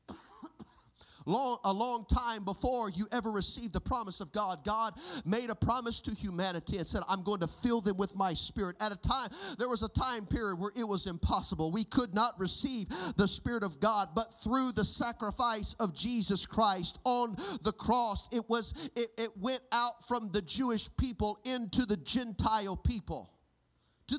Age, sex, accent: 40-59, male, American